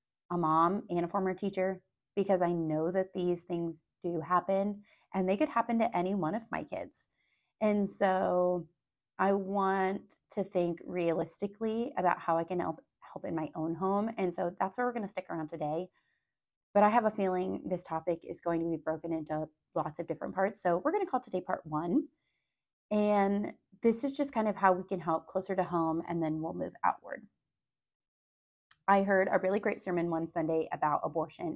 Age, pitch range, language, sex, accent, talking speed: 30-49, 165-200 Hz, English, female, American, 195 wpm